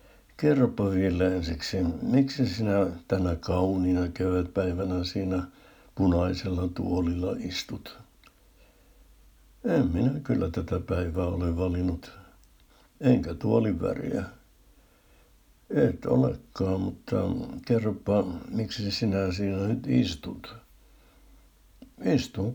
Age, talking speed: 60-79, 85 wpm